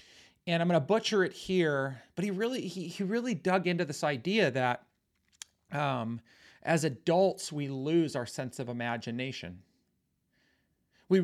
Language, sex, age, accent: English, male, 40-59, American